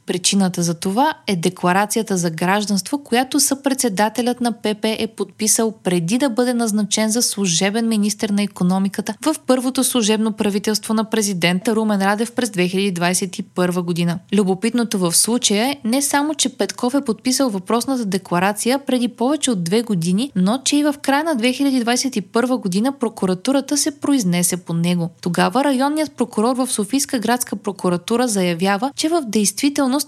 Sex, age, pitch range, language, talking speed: female, 20-39, 185-260 Hz, Bulgarian, 150 wpm